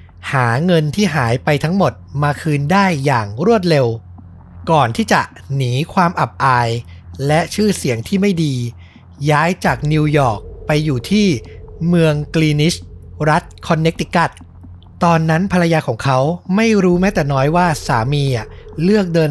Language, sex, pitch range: Thai, male, 115-165 Hz